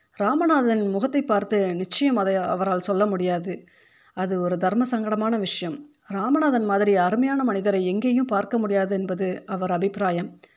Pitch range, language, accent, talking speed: 190-230 Hz, Tamil, native, 130 wpm